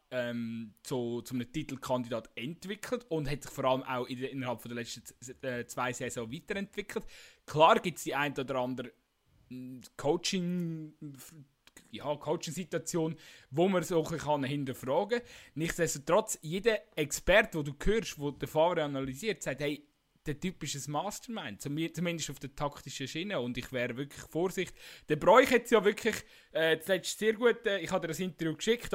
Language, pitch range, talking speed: German, 135-180 Hz, 165 wpm